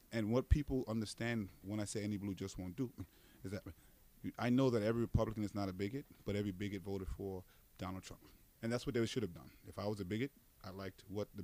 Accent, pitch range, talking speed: American, 100-125 Hz, 240 wpm